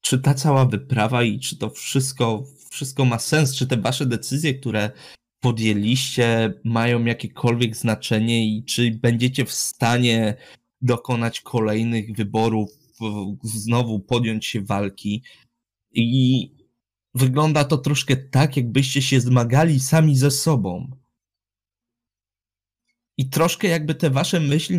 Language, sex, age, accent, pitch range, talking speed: Polish, male, 20-39, native, 110-135 Hz, 120 wpm